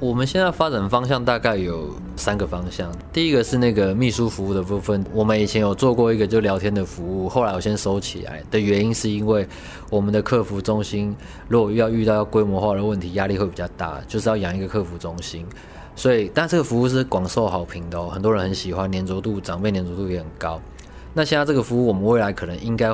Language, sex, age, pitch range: Chinese, male, 20-39, 90-110 Hz